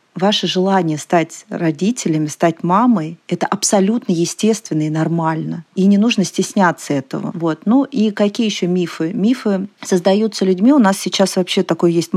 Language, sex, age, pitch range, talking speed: Russian, female, 30-49, 170-205 Hz, 150 wpm